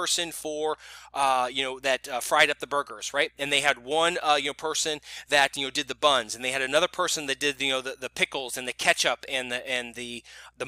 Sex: male